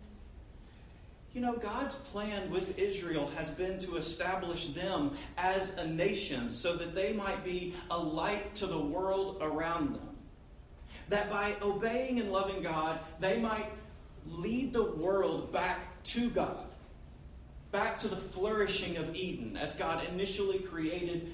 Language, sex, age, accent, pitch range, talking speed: English, male, 40-59, American, 150-205 Hz, 140 wpm